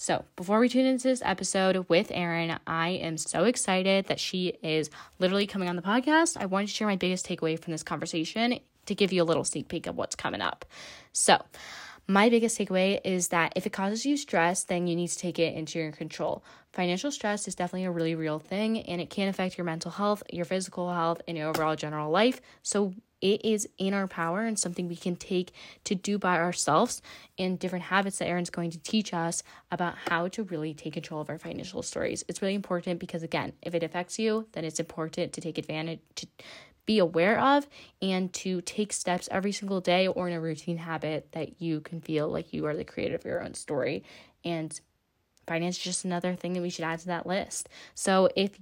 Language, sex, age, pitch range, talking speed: English, female, 10-29, 170-205 Hz, 220 wpm